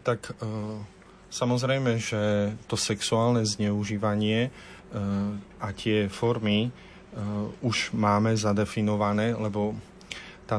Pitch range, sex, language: 100-115 Hz, male, Slovak